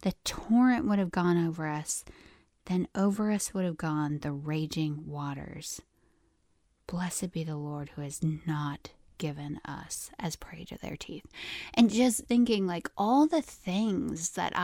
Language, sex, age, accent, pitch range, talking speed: English, female, 20-39, American, 170-215 Hz, 155 wpm